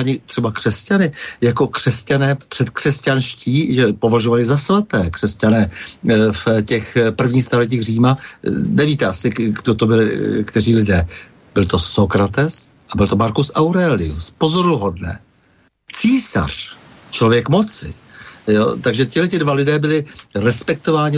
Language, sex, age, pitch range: Slovak, male, 60-79, 120-145 Hz